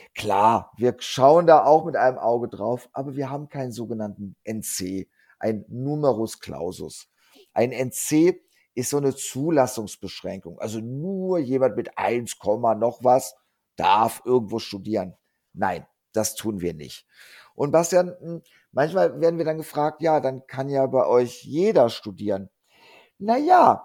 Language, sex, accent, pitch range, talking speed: German, male, German, 110-155 Hz, 140 wpm